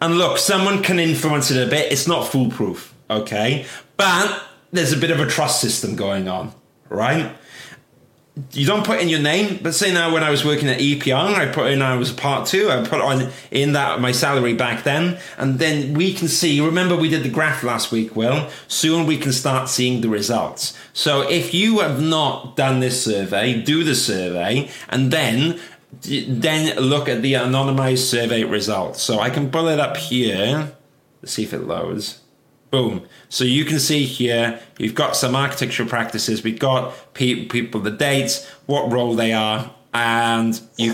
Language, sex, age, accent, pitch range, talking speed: English, male, 30-49, British, 115-150 Hz, 190 wpm